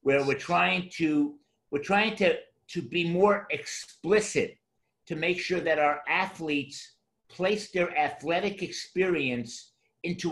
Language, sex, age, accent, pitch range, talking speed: English, male, 50-69, American, 145-200 Hz, 130 wpm